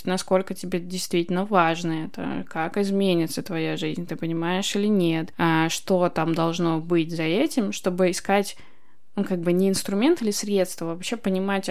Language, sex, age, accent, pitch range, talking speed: Russian, female, 20-39, native, 170-195 Hz, 165 wpm